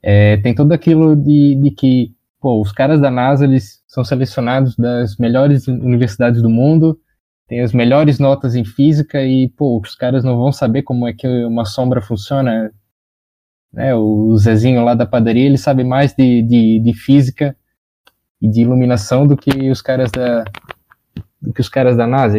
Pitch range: 110-135 Hz